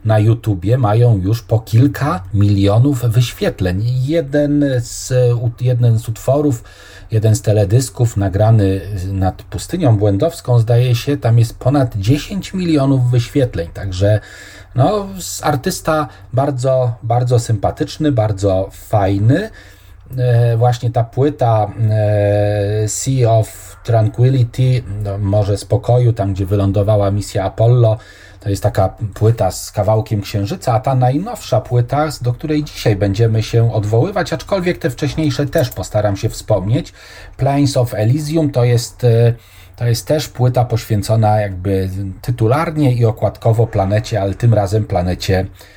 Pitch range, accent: 100-130 Hz, native